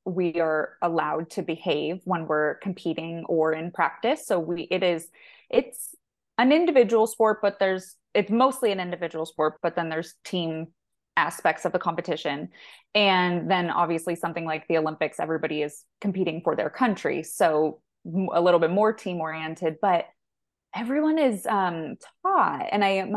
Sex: female